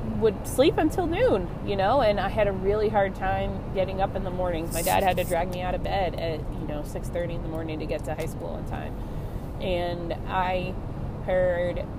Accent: American